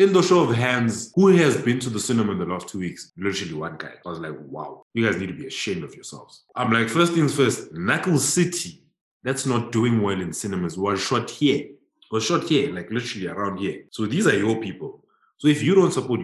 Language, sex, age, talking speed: English, male, 20-39, 235 wpm